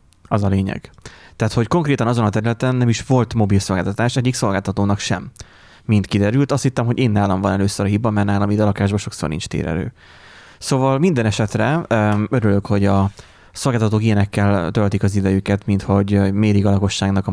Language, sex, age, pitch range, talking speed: Hungarian, male, 20-39, 100-115 Hz, 175 wpm